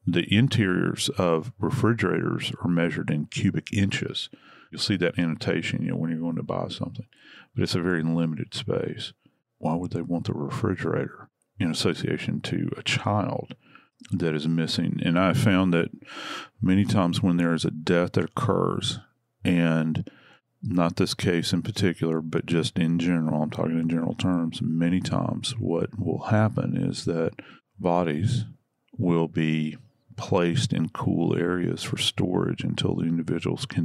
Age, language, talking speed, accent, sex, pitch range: 40-59, English, 155 wpm, American, male, 80-100 Hz